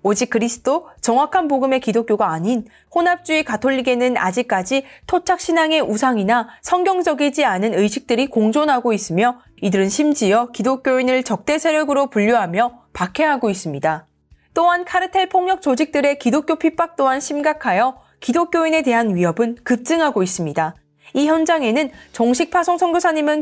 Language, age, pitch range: Korean, 20-39, 225-300 Hz